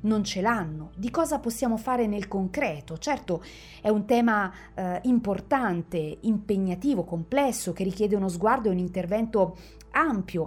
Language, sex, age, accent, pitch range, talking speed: Italian, female, 40-59, native, 170-230 Hz, 145 wpm